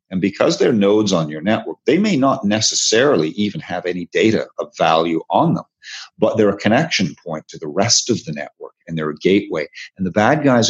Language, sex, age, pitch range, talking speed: English, male, 50-69, 90-120 Hz, 215 wpm